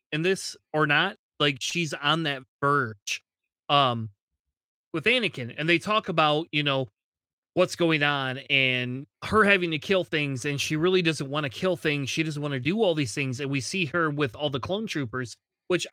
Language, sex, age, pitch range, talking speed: English, male, 30-49, 135-170 Hz, 200 wpm